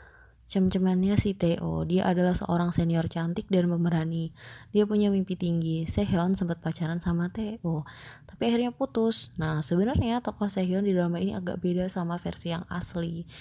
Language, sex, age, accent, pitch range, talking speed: Indonesian, female, 20-39, native, 165-190 Hz, 155 wpm